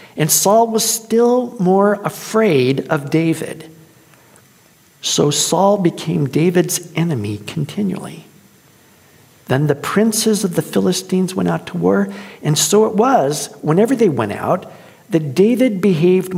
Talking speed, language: 130 wpm, English